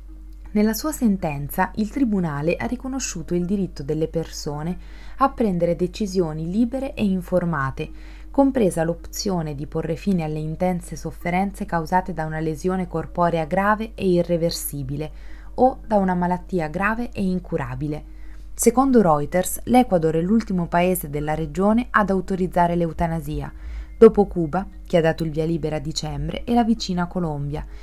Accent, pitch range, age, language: native, 155-200 Hz, 20-39, Italian